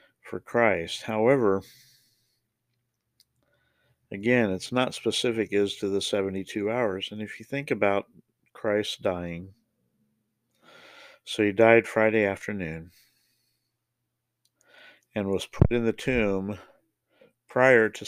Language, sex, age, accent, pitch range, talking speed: English, male, 50-69, American, 100-120 Hz, 105 wpm